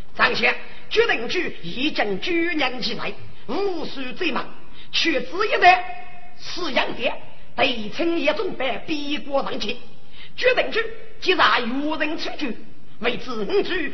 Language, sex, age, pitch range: Chinese, female, 40-59, 250-370 Hz